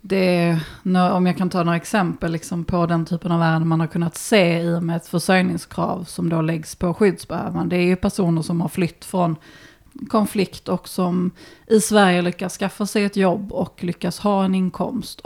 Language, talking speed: Swedish, 200 wpm